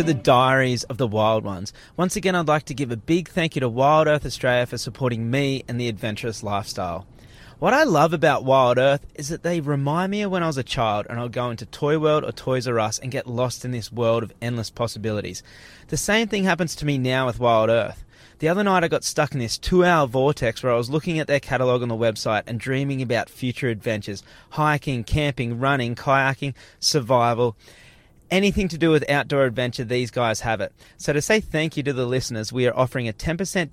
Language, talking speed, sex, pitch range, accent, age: English, 225 wpm, male, 115-150 Hz, Australian, 20-39